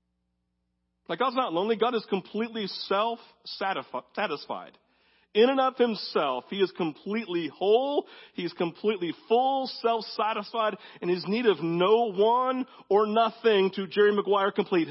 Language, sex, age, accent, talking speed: English, male, 40-59, American, 130 wpm